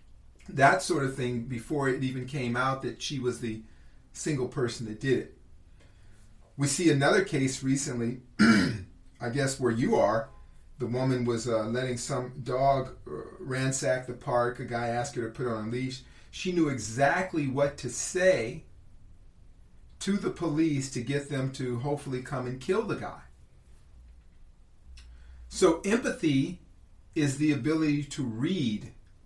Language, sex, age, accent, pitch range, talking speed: English, male, 40-59, American, 110-145 Hz, 150 wpm